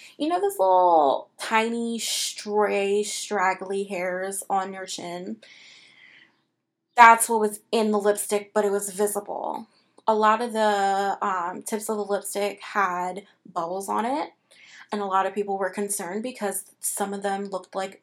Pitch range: 195-225 Hz